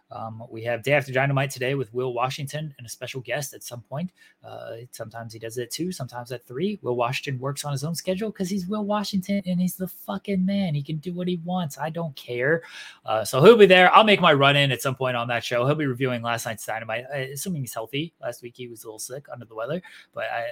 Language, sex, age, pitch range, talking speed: English, male, 20-39, 120-165 Hz, 255 wpm